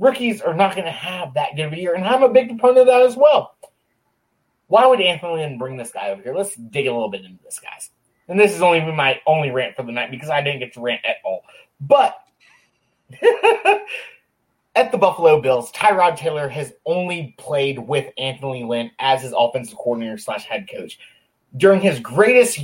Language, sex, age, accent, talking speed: English, male, 20-39, American, 205 wpm